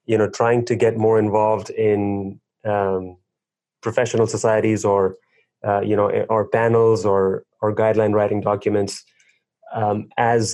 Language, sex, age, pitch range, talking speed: English, male, 20-39, 105-115 Hz, 135 wpm